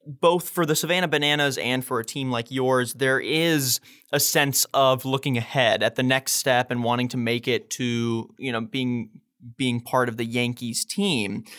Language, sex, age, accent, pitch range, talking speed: English, male, 20-39, American, 125-160 Hz, 190 wpm